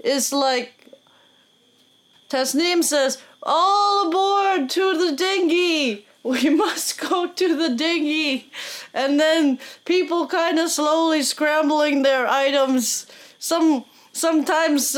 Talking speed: 105 wpm